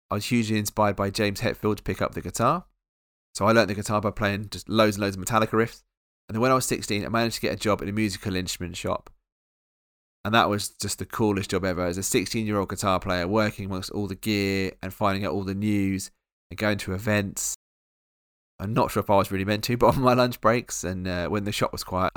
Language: English